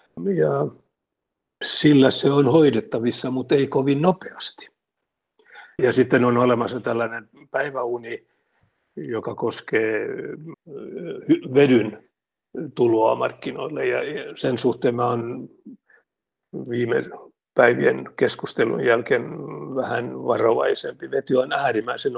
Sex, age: male, 60-79